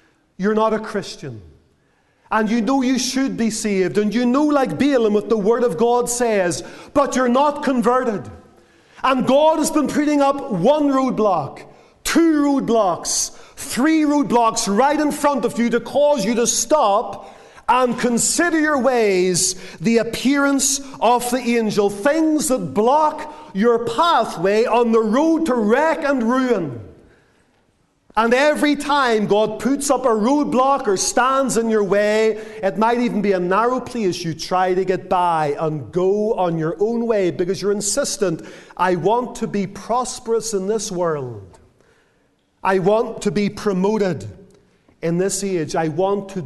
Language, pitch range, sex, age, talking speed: English, 190-255 Hz, male, 40-59, 160 wpm